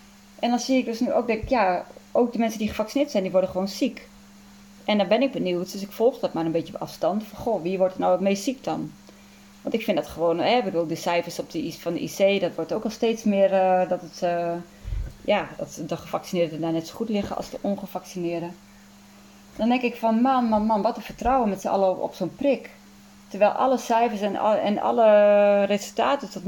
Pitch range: 180-215 Hz